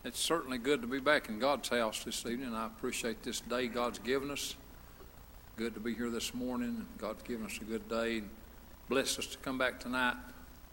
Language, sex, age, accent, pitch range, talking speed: English, male, 60-79, American, 100-135 Hz, 205 wpm